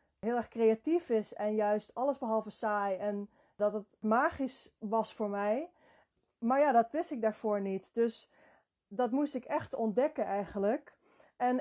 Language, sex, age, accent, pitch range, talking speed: Dutch, female, 20-39, Dutch, 215-245 Hz, 160 wpm